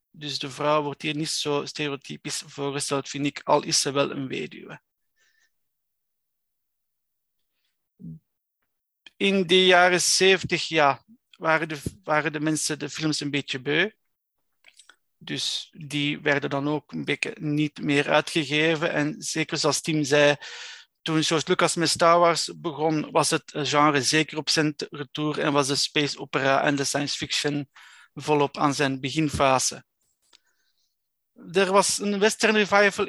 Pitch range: 145-185 Hz